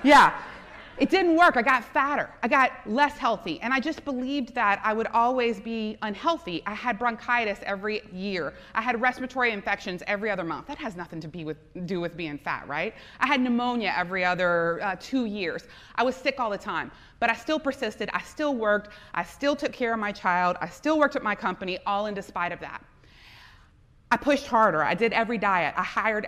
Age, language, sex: 30-49, English, female